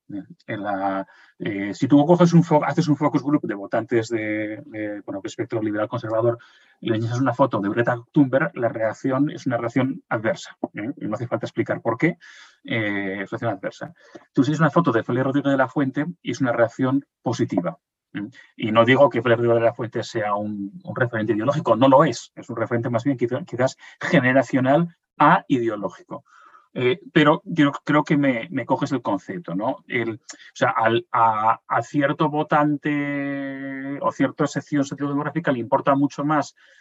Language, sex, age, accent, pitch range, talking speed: Spanish, male, 30-49, Spanish, 115-145 Hz, 190 wpm